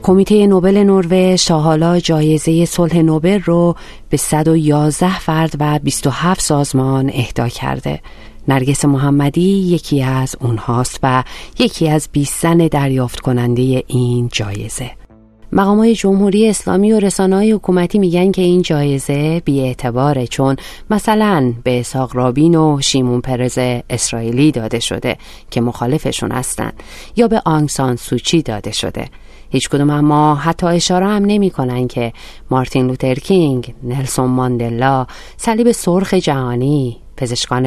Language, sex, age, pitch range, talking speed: Persian, female, 30-49, 125-170 Hz, 125 wpm